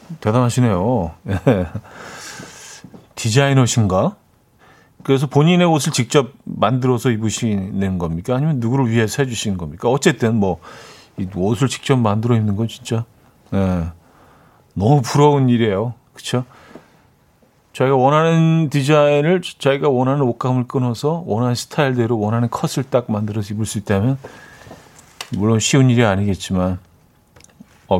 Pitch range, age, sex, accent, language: 105-145 Hz, 40-59, male, native, Korean